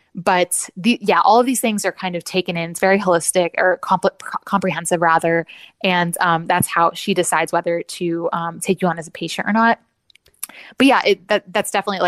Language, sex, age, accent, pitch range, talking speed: English, female, 20-39, American, 170-200 Hz, 210 wpm